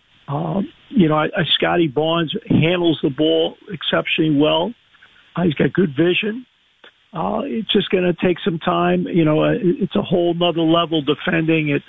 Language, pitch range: English, 155-190 Hz